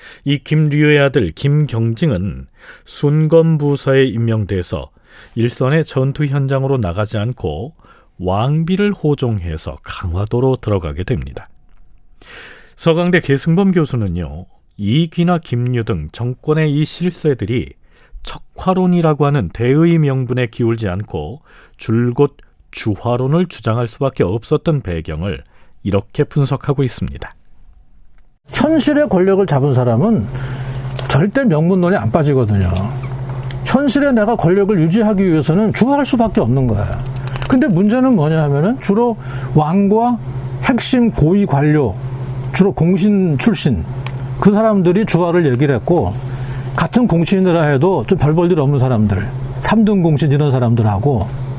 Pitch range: 120-175 Hz